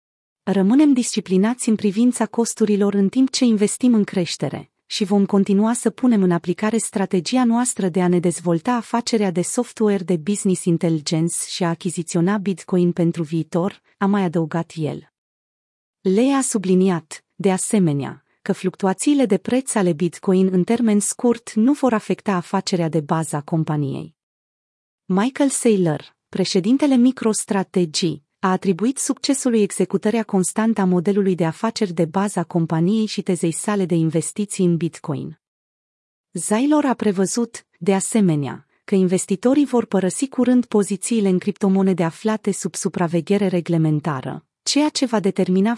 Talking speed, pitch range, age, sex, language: 140 wpm, 180-225 Hz, 30-49, female, Romanian